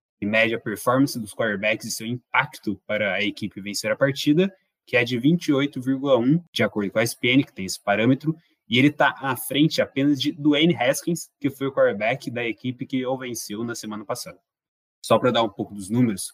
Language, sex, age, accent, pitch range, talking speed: Portuguese, male, 20-39, Brazilian, 110-145 Hz, 205 wpm